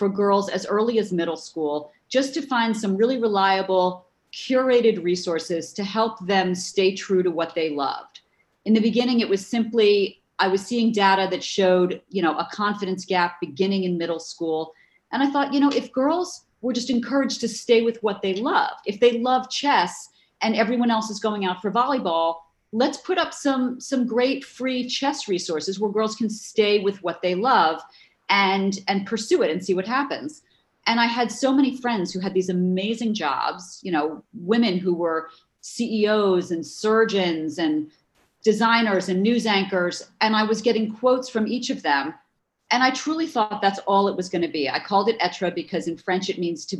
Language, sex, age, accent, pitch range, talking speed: English, female, 40-59, American, 180-235 Hz, 195 wpm